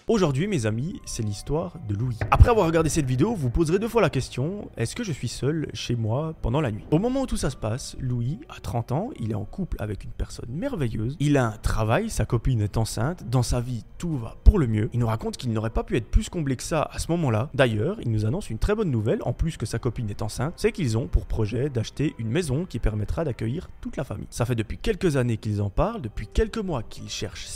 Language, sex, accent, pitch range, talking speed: French, male, French, 110-145 Hz, 260 wpm